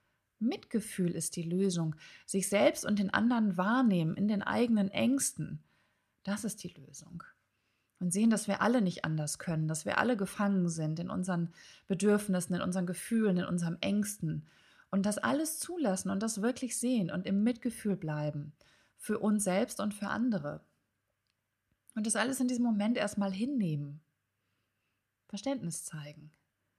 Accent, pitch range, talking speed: German, 160-215 Hz, 150 wpm